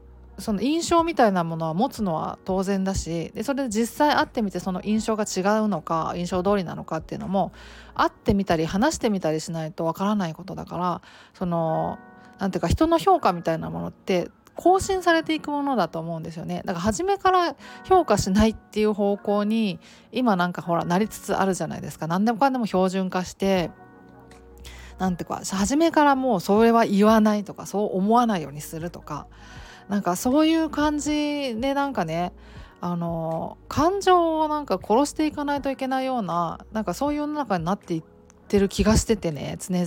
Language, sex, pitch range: Japanese, female, 175-270 Hz